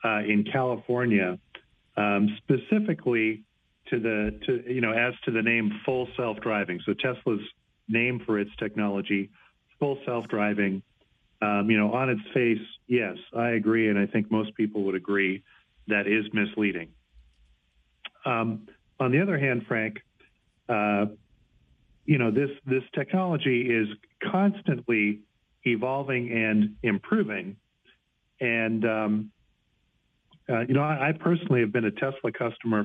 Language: English